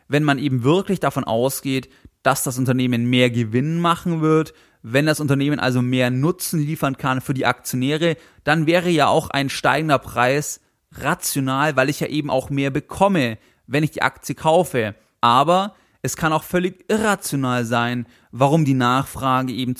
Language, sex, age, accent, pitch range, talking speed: German, male, 30-49, German, 125-165 Hz, 165 wpm